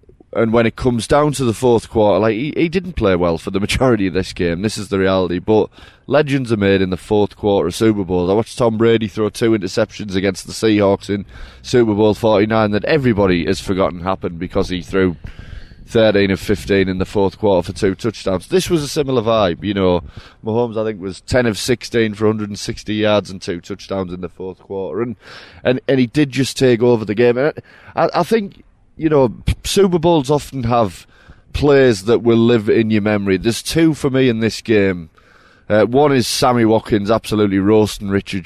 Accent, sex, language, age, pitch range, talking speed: British, male, English, 20-39, 95-120 Hz, 210 wpm